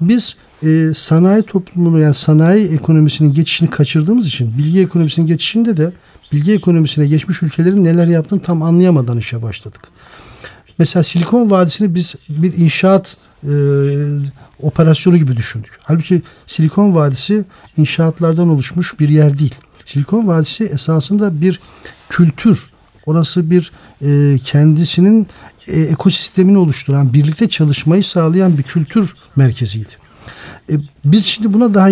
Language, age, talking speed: Turkish, 50-69, 120 wpm